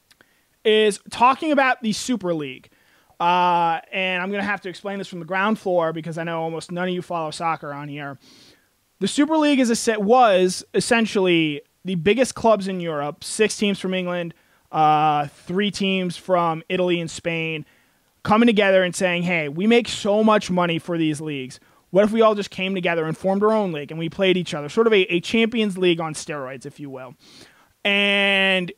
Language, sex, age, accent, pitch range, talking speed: English, male, 20-39, American, 165-195 Hz, 200 wpm